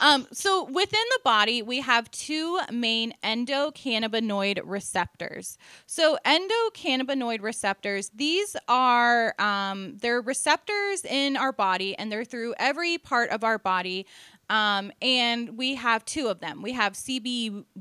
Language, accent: English, American